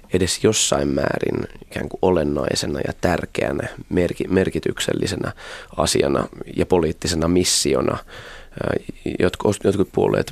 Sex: male